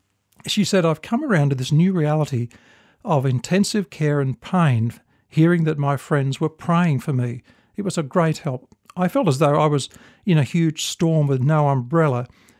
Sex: male